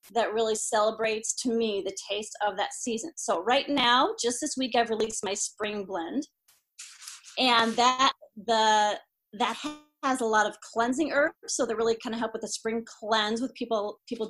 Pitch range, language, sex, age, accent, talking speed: 215-255 Hz, English, female, 30-49, American, 185 wpm